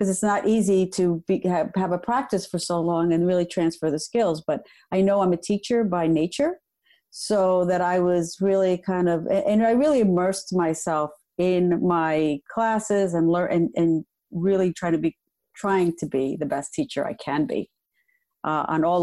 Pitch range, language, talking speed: 155-190 Hz, English, 190 wpm